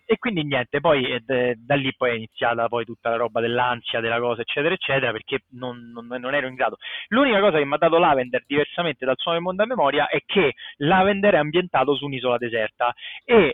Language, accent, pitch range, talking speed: Italian, native, 130-190 Hz, 210 wpm